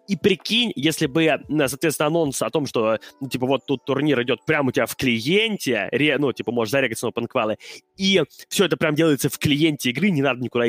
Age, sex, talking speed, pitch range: 20-39, male, 210 wpm, 135-195 Hz